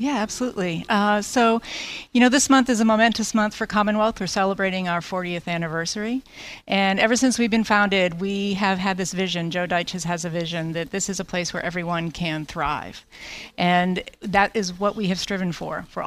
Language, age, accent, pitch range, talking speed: English, 40-59, American, 180-230 Hz, 200 wpm